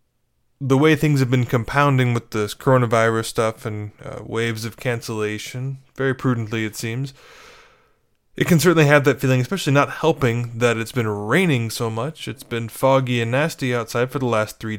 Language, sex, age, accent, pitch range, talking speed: English, male, 20-39, American, 115-145 Hz, 180 wpm